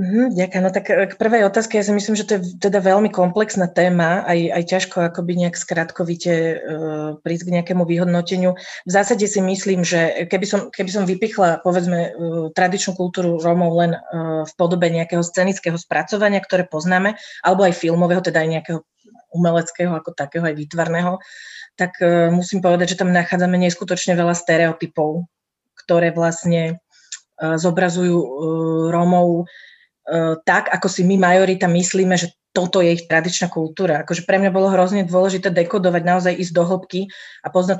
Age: 30-49